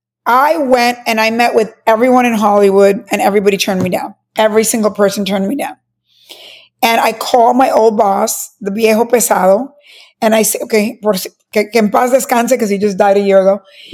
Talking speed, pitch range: 190 wpm, 205-270 Hz